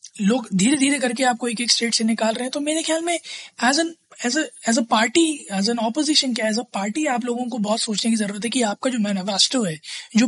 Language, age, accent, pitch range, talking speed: Hindi, 20-39, native, 195-245 Hz, 235 wpm